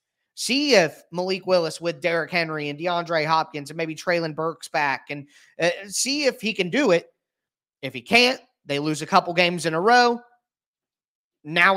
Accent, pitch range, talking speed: American, 155-185 Hz, 180 wpm